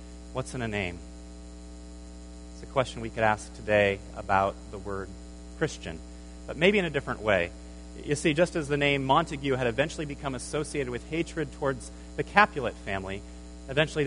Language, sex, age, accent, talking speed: English, male, 30-49, American, 165 wpm